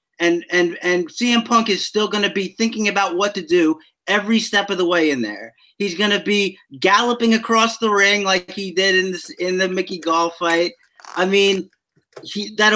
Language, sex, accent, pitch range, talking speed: English, male, American, 185-235 Hz, 205 wpm